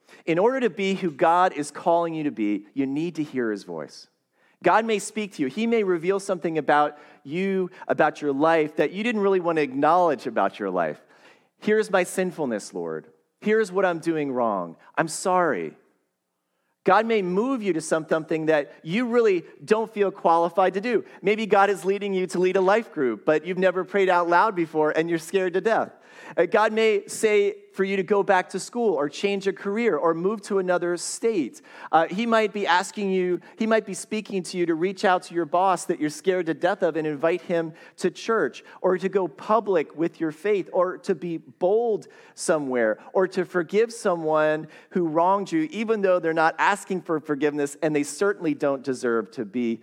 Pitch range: 160-200 Hz